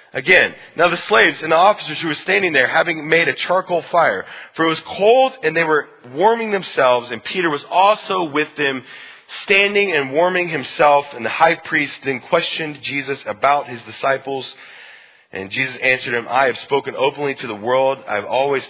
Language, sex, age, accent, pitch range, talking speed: English, male, 30-49, American, 130-170 Hz, 190 wpm